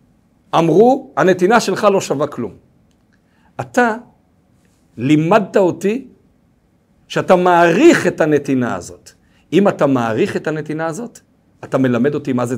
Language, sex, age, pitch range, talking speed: Hebrew, male, 50-69, 145-220 Hz, 120 wpm